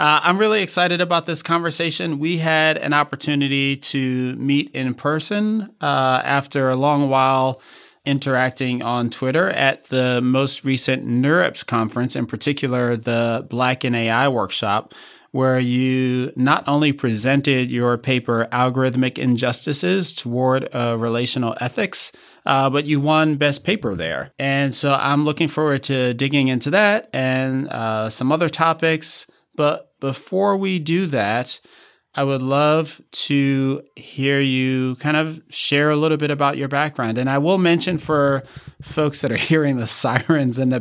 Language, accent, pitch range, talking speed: English, American, 120-145 Hz, 150 wpm